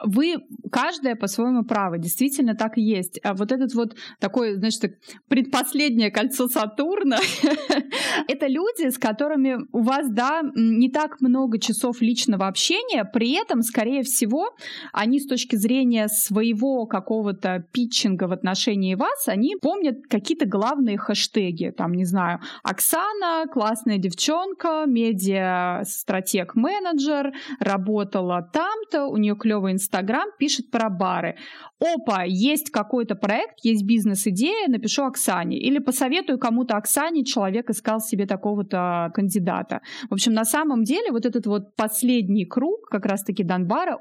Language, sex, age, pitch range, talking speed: Russian, female, 20-39, 210-270 Hz, 130 wpm